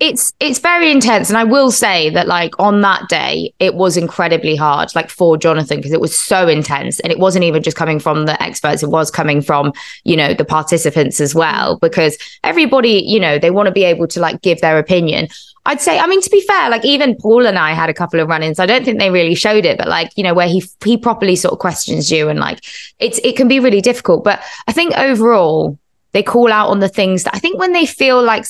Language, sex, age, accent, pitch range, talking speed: English, female, 20-39, British, 155-205 Hz, 250 wpm